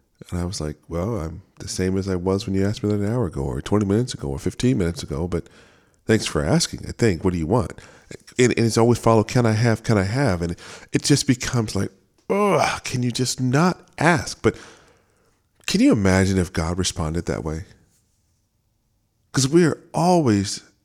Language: English